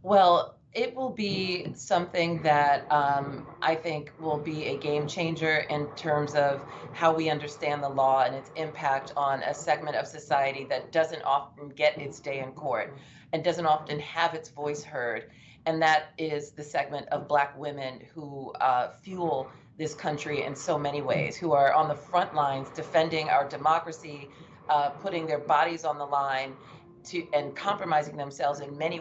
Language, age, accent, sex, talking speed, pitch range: English, 30-49, American, female, 175 wpm, 145-170 Hz